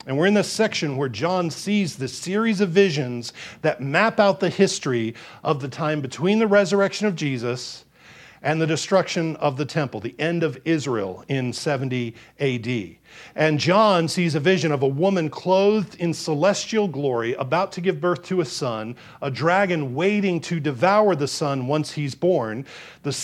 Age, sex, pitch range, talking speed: 50-69, male, 145-190 Hz, 175 wpm